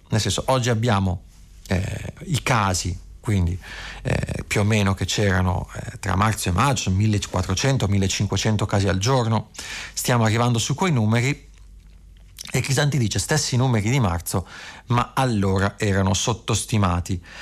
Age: 40-59